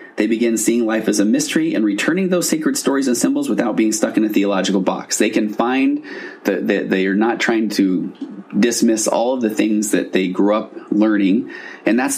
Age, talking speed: 30-49, 205 wpm